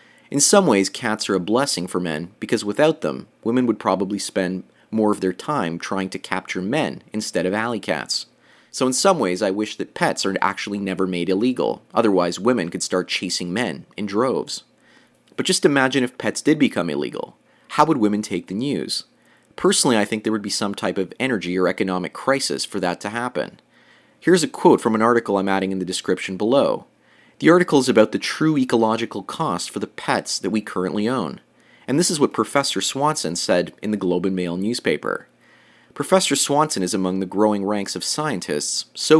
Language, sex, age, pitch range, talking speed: English, male, 30-49, 95-130 Hz, 200 wpm